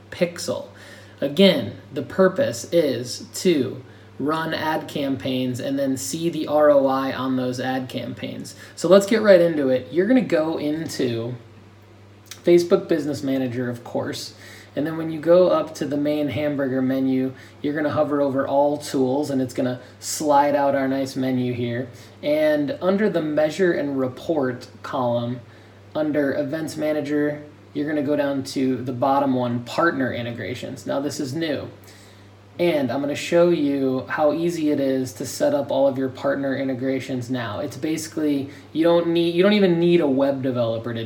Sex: male